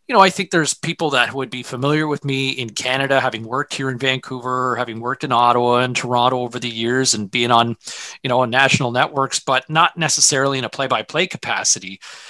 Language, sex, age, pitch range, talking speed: English, male, 30-49, 135-195 Hz, 210 wpm